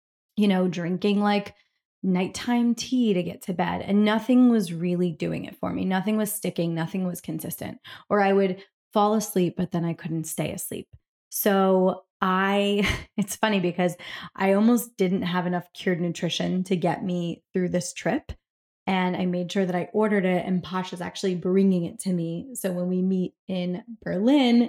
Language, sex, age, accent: English, female, 20-39, American